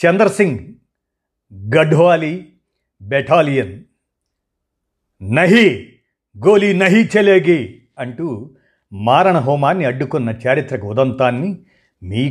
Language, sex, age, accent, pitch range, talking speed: Telugu, male, 50-69, native, 120-175 Hz, 70 wpm